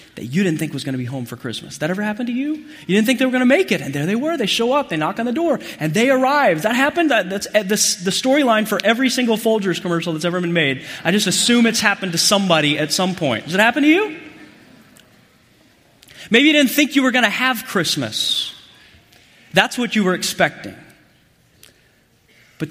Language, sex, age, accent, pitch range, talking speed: English, male, 30-49, American, 160-255 Hz, 225 wpm